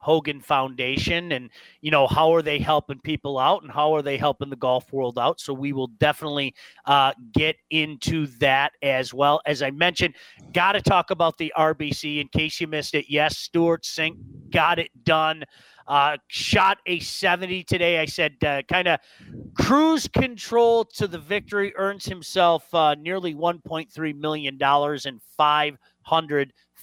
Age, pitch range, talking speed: 40-59, 145-180 Hz, 160 wpm